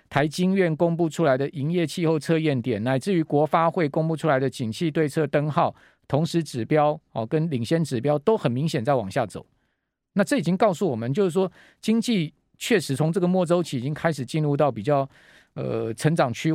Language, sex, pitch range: Chinese, male, 135-180 Hz